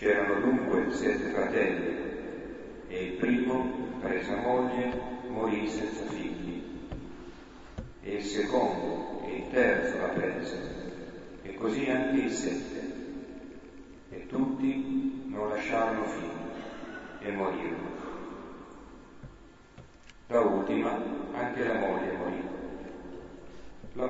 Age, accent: 40-59, native